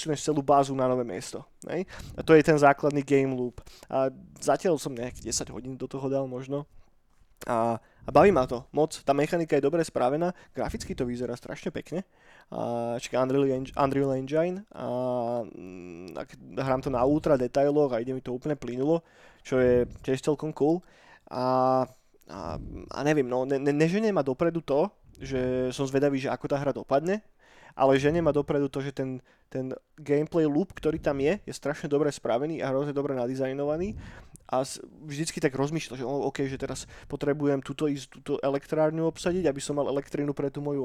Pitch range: 130-155 Hz